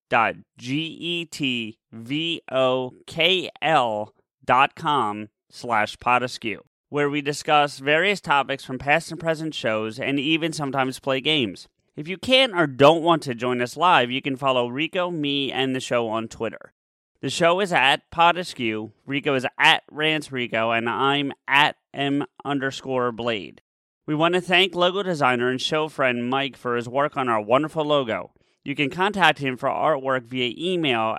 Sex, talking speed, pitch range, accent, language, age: male, 155 wpm, 125-155 Hz, American, English, 30-49